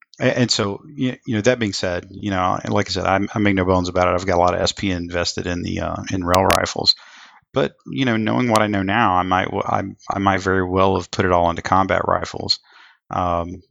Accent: American